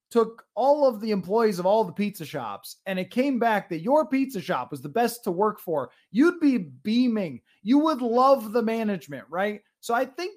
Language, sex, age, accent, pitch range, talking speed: English, male, 30-49, American, 165-235 Hz, 210 wpm